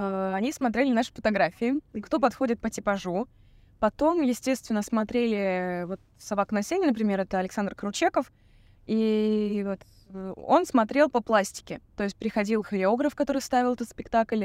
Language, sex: Russian, female